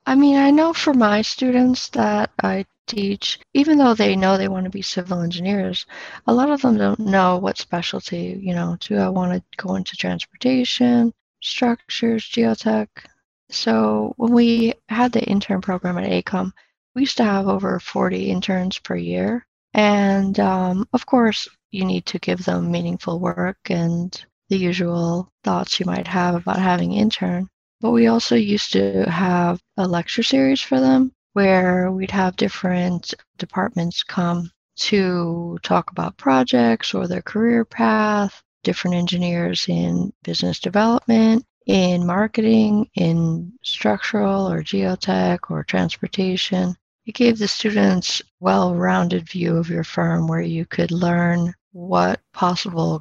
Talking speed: 150 wpm